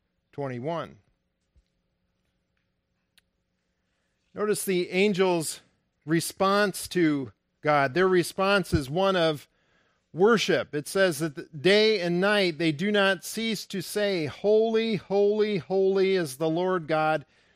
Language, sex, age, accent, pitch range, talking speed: English, male, 50-69, American, 150-190 Hz, 110 wpm